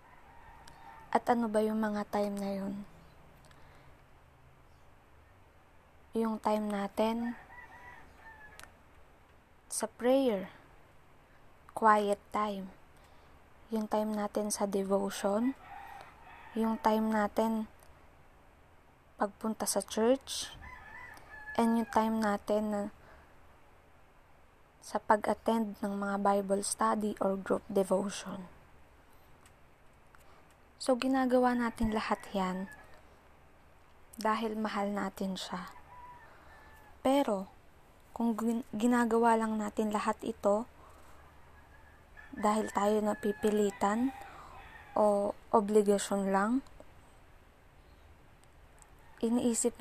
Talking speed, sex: 75 wpm, female